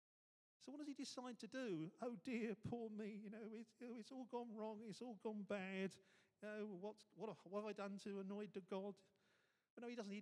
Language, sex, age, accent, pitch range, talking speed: English, male, 40-59, British, 165-220 Hz, 225 wpm